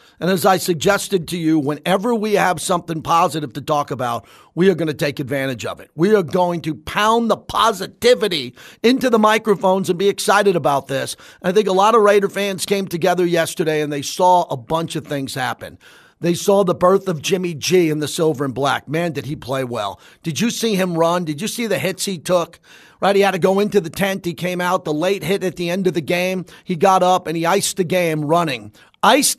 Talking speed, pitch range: 230 wpm, 160-200 Hz